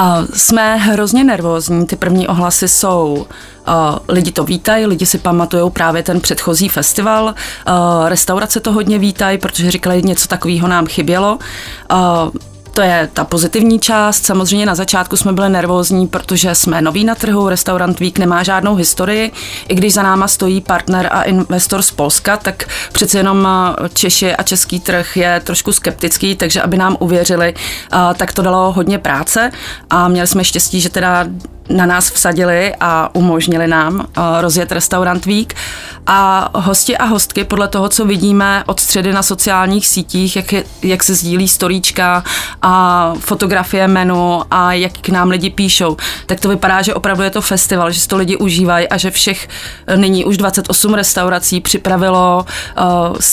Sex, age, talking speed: female, 30-49, 165 wpm